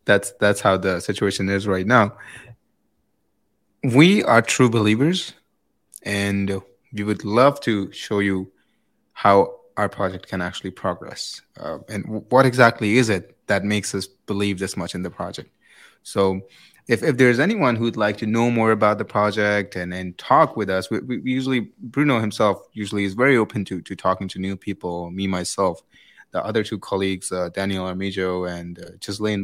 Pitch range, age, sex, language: 95-130 Hz, 20-39, male, English